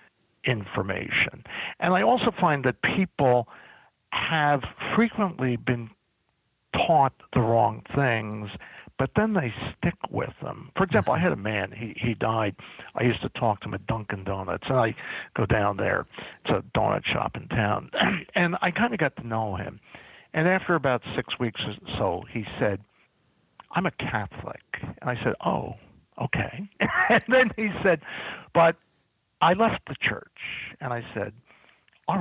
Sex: male